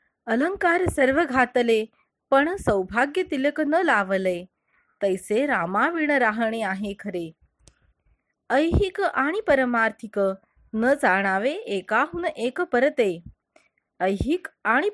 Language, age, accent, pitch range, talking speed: Marathi, 20-39, native, 200-295 Hz, 90 wpm